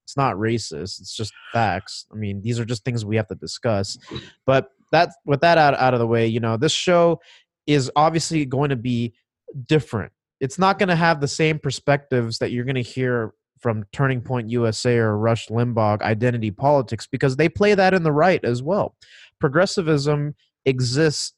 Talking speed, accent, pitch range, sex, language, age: 190 wpm, American, 115-145 Hz, male, English, 30-49